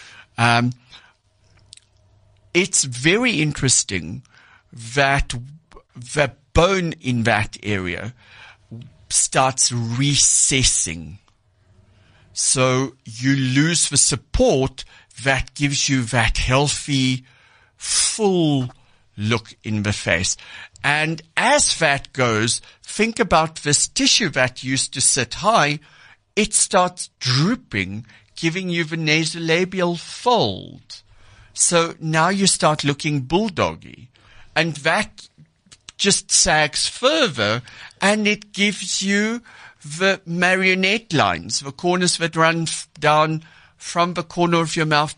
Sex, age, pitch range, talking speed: male, 60-79, 115-170 Hz, 100 wpm